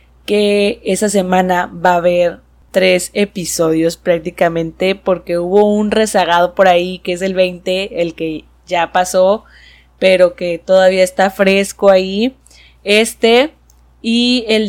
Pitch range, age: 170-200 Hz, 20-39